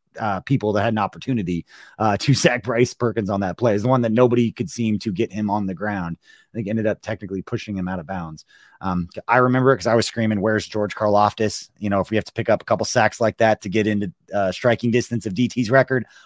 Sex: male